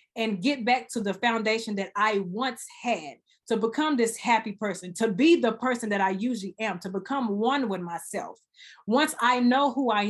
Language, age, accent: English, 30-49, American